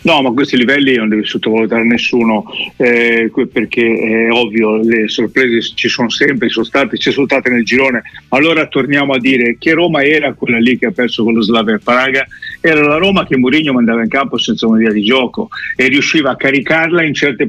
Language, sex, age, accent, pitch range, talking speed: Italian, male, 50-69, native, 115-145 Hz, 200 wpm